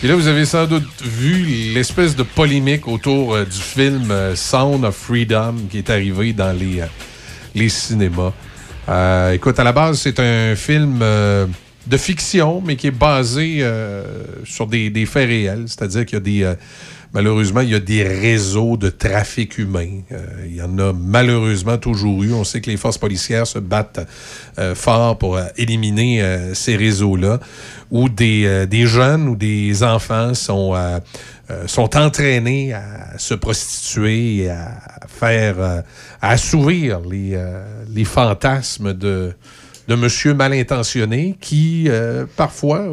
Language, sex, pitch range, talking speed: French, male, 105-145 Hz, 170 wpm